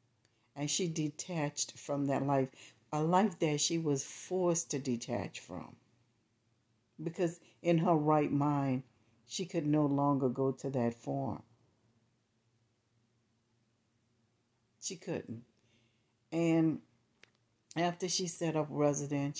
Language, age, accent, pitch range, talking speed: English, 60-79, American, 115-155 Hz, 110 wpm